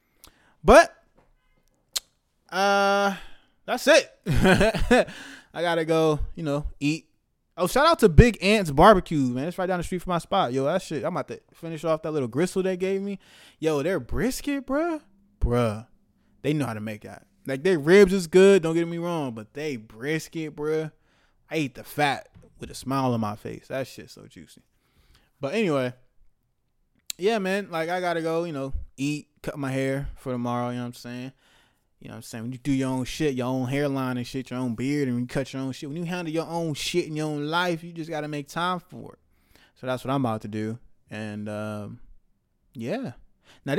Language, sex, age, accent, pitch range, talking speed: English, male, 20-39, American, 125-170 Hz, 210 wpm